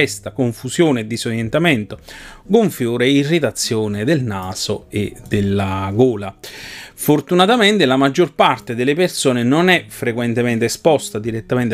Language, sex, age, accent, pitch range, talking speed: Italian, male, 30-49, native, 110-145 Hz, 110 wpm